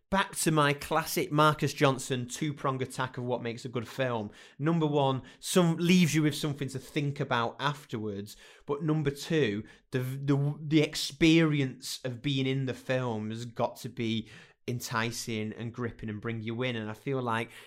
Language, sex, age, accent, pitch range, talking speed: English, male, 30-49, British, 120-145 Hz, 180 wpm